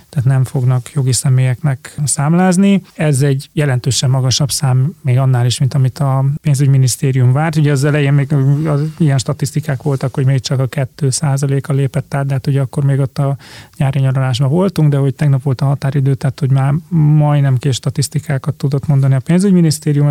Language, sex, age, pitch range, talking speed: Hungarian, male, 30-49, 130-150 Hz, 175 wpm